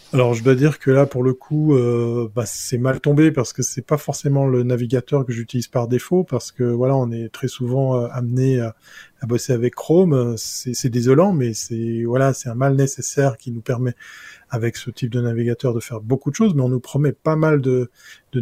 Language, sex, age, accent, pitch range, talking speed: French, male, 20-39, French, 120-145 Hz, 230 wpm